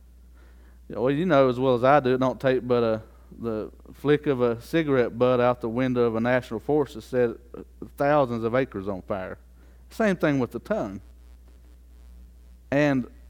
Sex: male